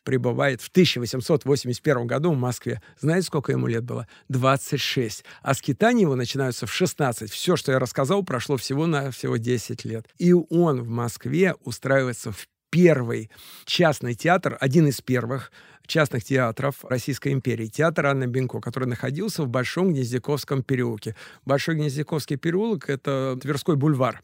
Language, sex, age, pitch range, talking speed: Russian, male, 50-69, 120-150 Hz, 150 wpm